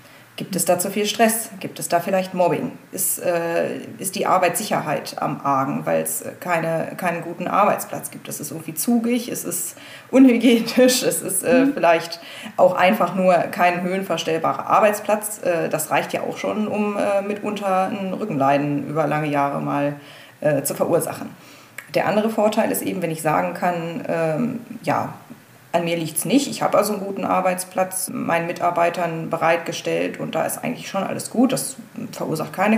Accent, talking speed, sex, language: German, 170 wpm, female, German